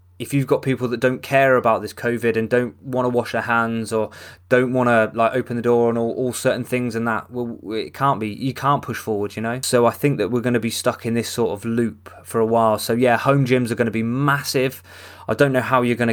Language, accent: English, British